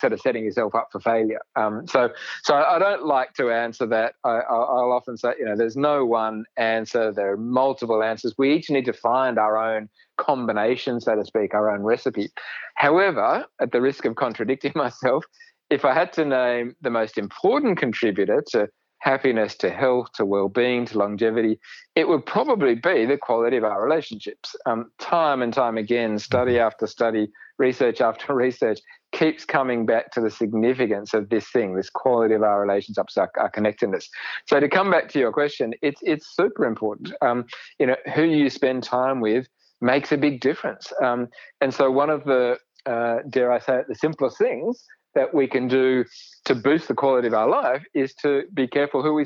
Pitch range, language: 115-140 Hz, English